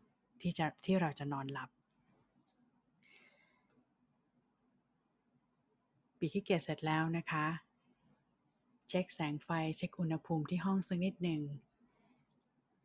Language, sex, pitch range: Thai, female, 150-185 Hz